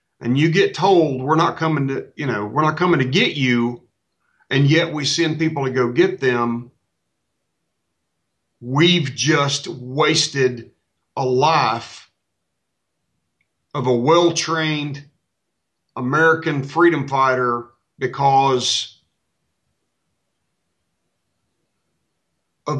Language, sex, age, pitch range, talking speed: English, male, 50-69, 125-160 Hz, 105 wpm